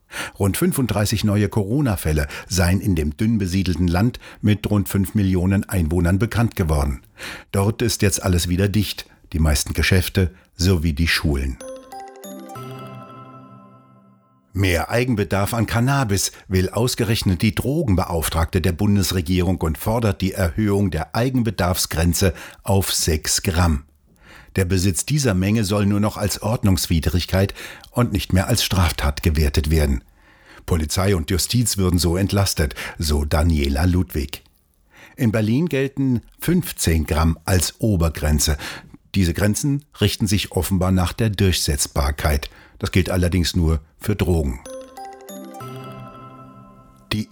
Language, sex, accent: German, male, German